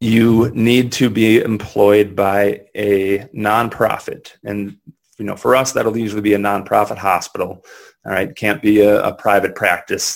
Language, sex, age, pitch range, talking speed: English, male, 30-49, 100-125 Hz, 160 wpm